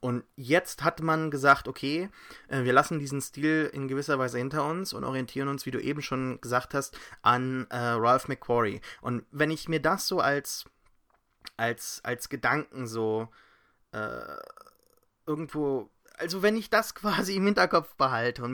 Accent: German